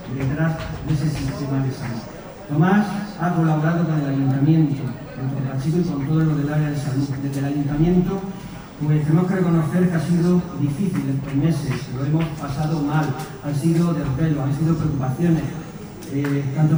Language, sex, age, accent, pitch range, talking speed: Spanish, male, 40-59, Spanish, 140-165 Hz, 170 wpm